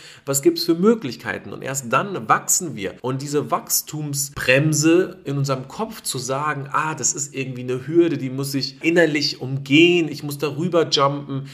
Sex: male